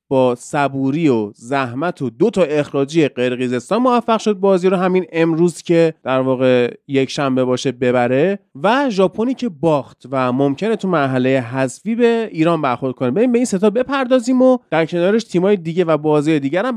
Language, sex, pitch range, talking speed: Persian, male, 140-200 Hz, 170 wpm